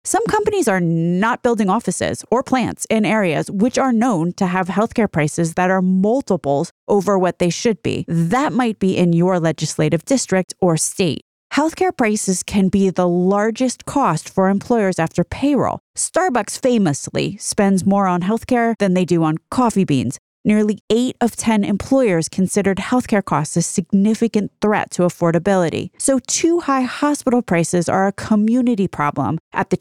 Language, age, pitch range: English, 30-49, 170-230 Hz